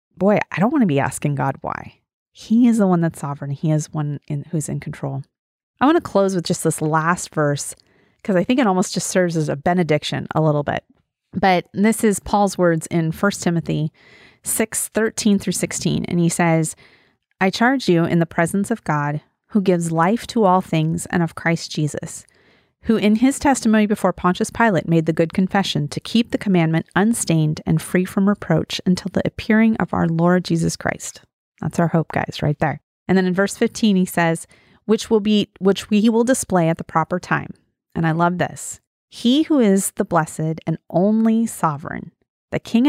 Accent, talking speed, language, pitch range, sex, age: American, 200 wpm, English, 160-215 Hz, female, 30-49